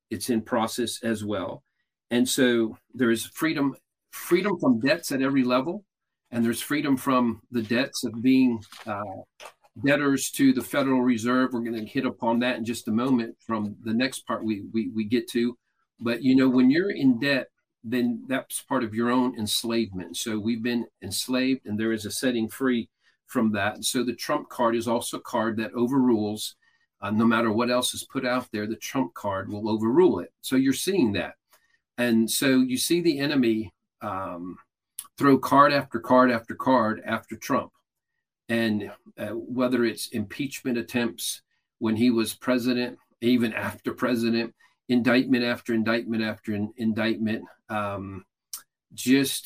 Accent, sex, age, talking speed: American, male, 50-69, 170 wpm